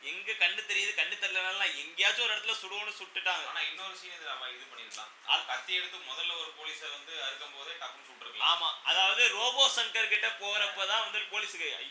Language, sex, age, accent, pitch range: Tamil, male, 20-39, native, 180-255 Hz